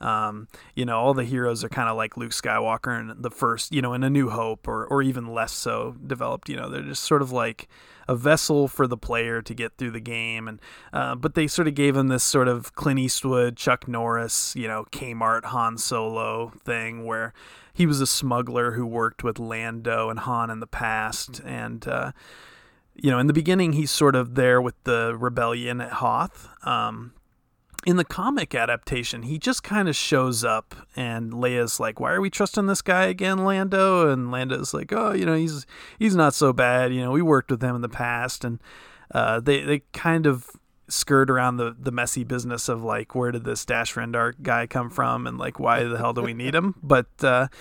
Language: English